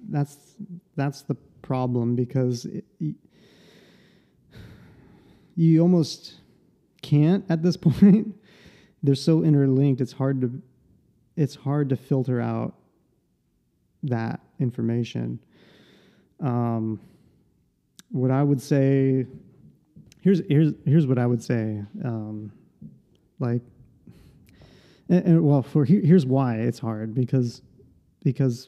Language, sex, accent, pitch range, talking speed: English, male, American, 120-155 Hz, 105 wpm